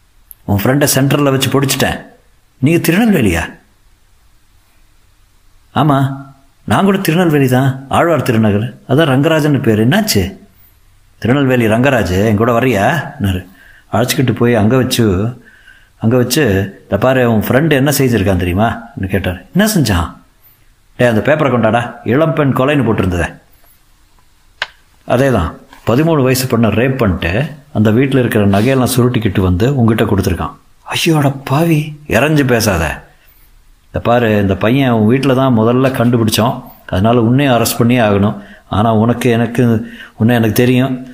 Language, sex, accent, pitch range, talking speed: Tamil, male, native, 105-130 Hz, 125 wpm